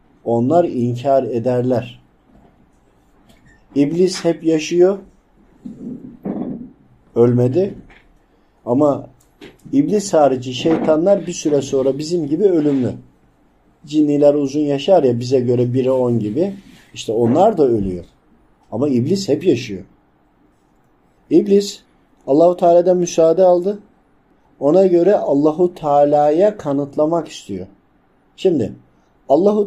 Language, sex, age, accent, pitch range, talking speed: Turkish, male, 50-69, native, 125-175 Hz, 95 wpm